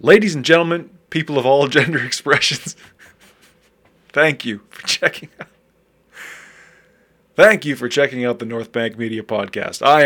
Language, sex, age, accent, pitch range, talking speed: English, male, 20-39, American, 120-155 Hz, 145 wpm